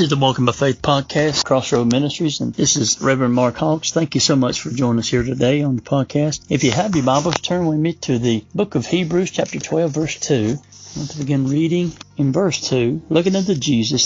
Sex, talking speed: male, 235 wpm